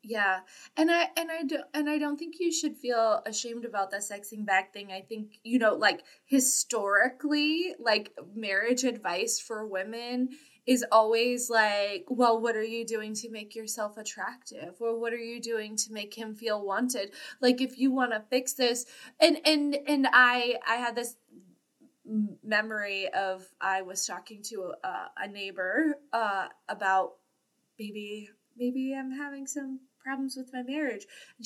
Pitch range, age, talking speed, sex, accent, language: 210-265 Hz, 20-39, 165 wpm, female, American, English